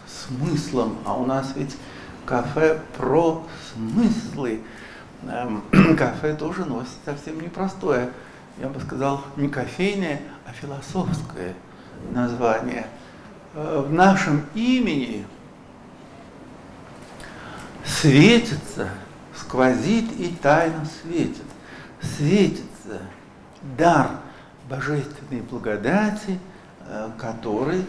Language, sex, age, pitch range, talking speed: Russian, male, 60-79, 125-180 Hz, 75 wpm